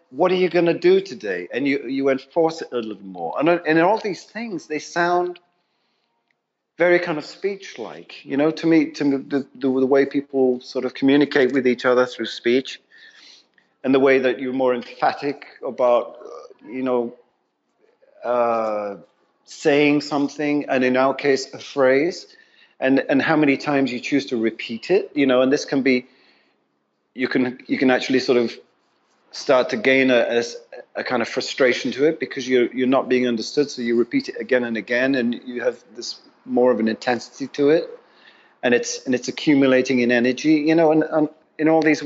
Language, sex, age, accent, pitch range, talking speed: English, male, 40-59, British, 130-160 Hz, 190 wpm